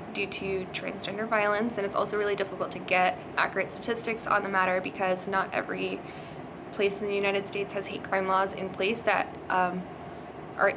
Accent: American